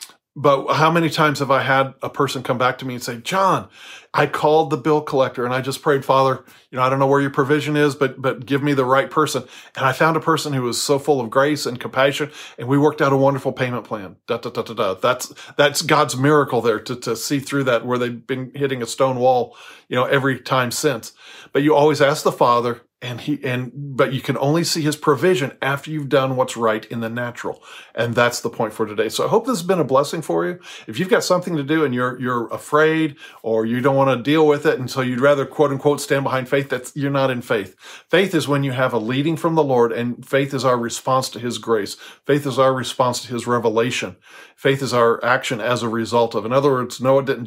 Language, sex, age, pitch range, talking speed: English, male, 40-59, 125-145 Hz, 245 wpm